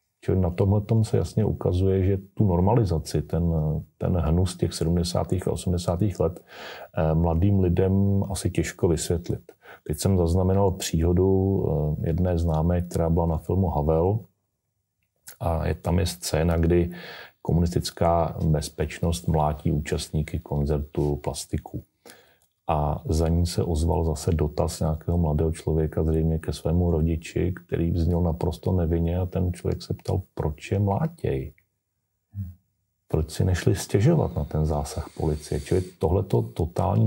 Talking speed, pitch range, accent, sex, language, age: 135 wpm, 80-95 Hz, native, male, Czech, 30-49